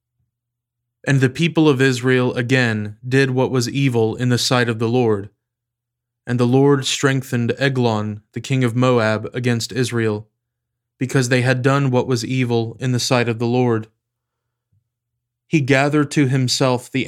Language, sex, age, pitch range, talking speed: English, male, 20-39, 120-130 Hz, 160 wpm